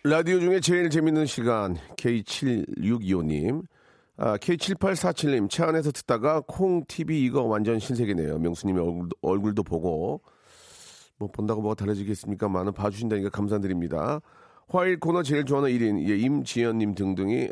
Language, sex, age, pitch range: Korean, male, 40-59, 105-170 Hz